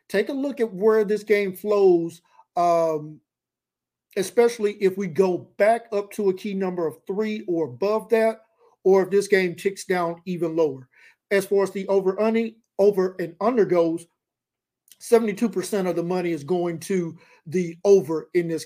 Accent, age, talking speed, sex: American, 50-69, 165 wpm, male